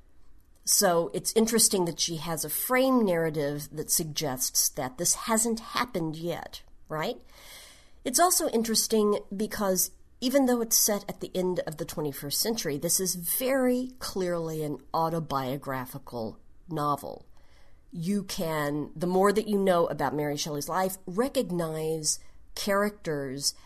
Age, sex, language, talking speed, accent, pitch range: 40-59, female, English, 130 wpm, American, 145-210 Hz